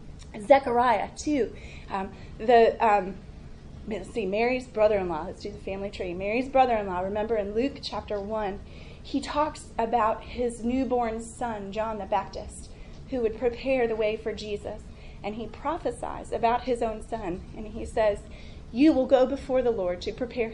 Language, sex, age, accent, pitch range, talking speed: English, female, 30-49, American, 210-255 Hz, 160 wpm